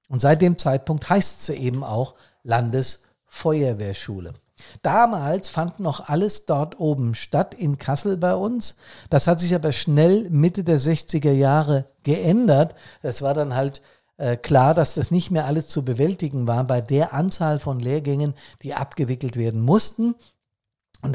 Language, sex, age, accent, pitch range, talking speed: German, male, 50-69, German, 125-160 Hz, 155 wpm